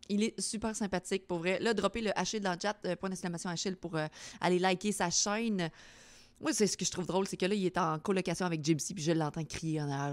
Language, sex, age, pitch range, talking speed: French, female, 30-49, 165-210 Hz, 265 wpm